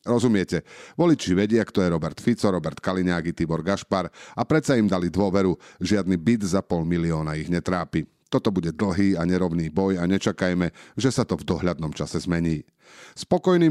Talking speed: 170 wpm